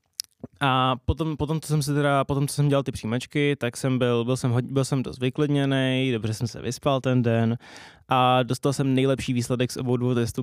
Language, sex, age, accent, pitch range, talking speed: Czech, male, 20-39, native, 115-135 Hz, 200 wpm